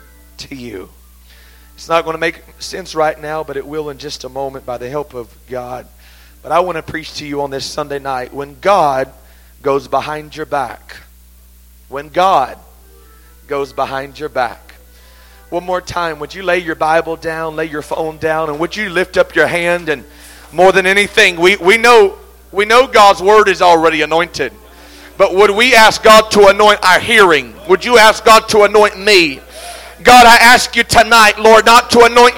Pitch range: 150-245 Hz